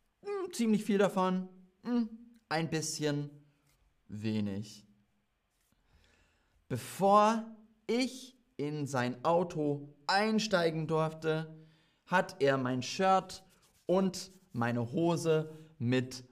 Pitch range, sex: 120-190 Hz, male